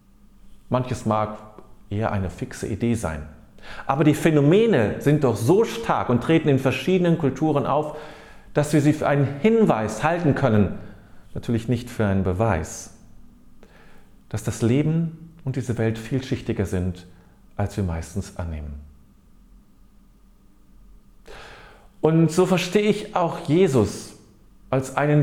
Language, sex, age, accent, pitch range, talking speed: German, male, 40-59, German, 100-145 Hz, 125 wpm